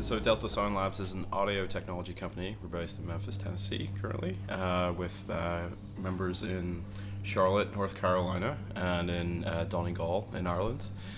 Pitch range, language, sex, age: 90-100 Hz, English, male, 20-39